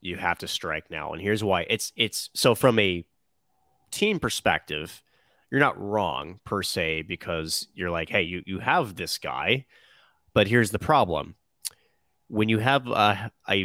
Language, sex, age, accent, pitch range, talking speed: English, male, 30-49, American, 90-105 Hz, 165 wpm